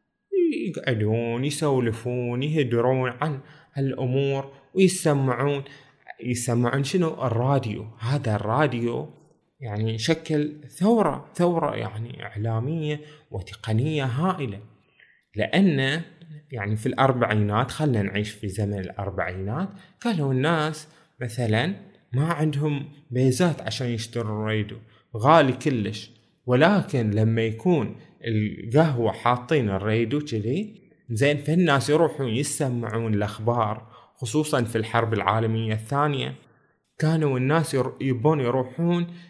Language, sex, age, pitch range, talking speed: Arabic, male, 20-39, 115-150 Hz, 90 wpm